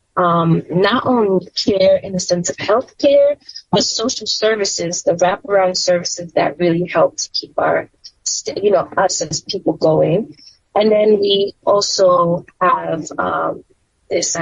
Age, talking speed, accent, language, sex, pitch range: 20-39, 150 wpm, American, English, female, 180-225 Hz